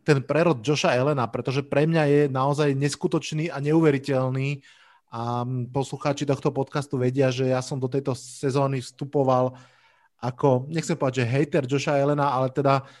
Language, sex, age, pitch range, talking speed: Slovak, male, 30-49, 130-155 Hz, 150 wpm